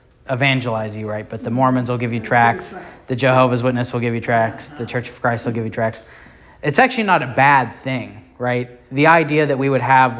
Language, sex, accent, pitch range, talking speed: English, male, American, 115-130 Hz, 225 wpm